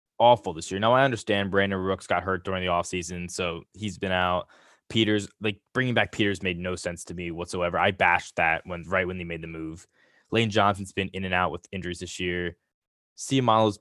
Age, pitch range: 10-29, 90-110 Hz